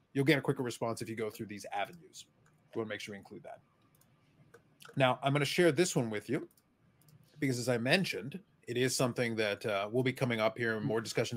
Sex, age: male, 30-49